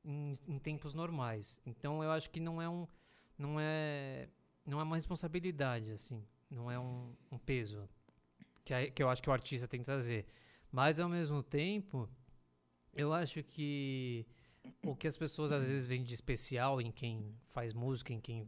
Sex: male